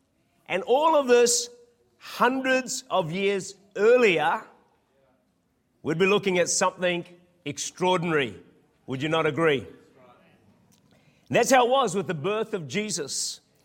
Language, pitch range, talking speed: English, 145-210 Hz, 120 wpm